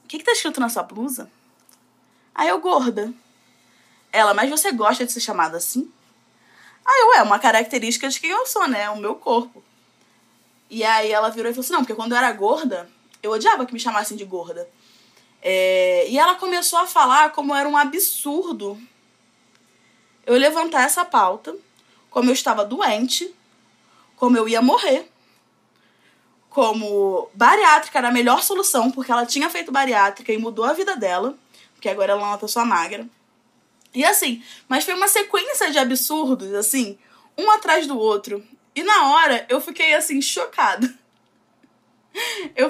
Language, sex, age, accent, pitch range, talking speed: Portuguese, female, 20-39, Brazilian, 220-305 Hz, 165 wpm